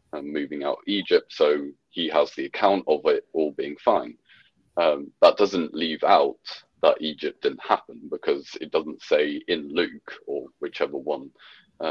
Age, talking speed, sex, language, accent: 40-59, 165 wpm, male, English, British